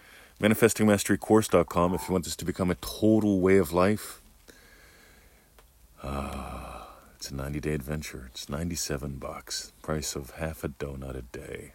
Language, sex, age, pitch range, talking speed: English, male, 40-59, 75-100 Hz, 145 wpm